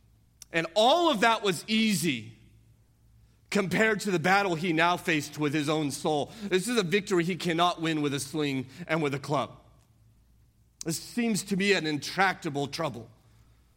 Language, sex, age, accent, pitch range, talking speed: English, male, 40-59, American, 125-165 Hz, 165 wpm